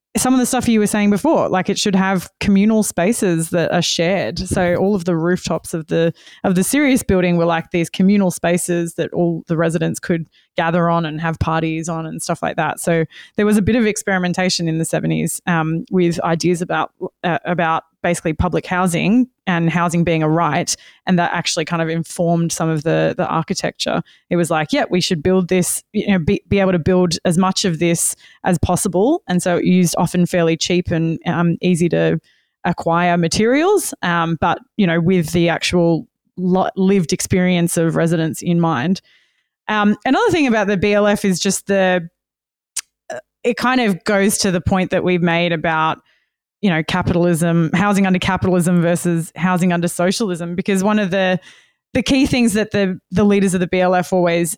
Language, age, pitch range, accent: English, 20-39, 170-200 Hz, Australian